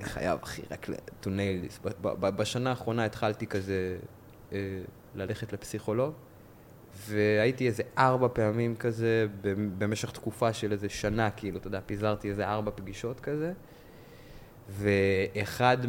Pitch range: 100-120 Hz